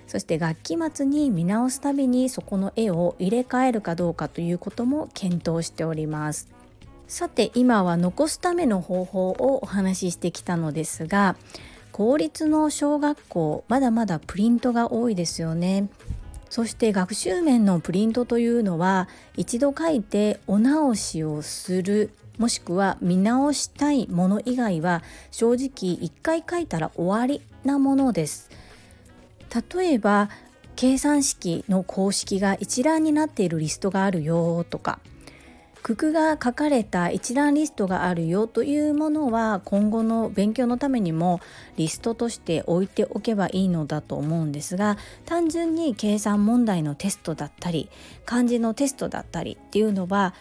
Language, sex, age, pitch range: Japanese, female, 40-59, 175-250 Hz